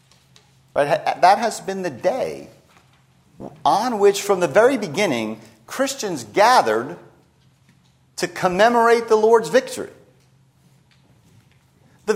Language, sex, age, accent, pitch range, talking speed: English, male, 50-69, American, 145-210 Hz, 95 wpm